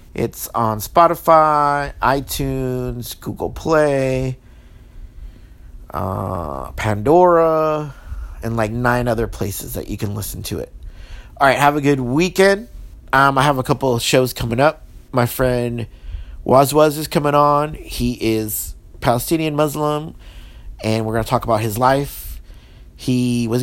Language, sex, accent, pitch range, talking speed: English, male, American, 110-145 Hz, 135 wpm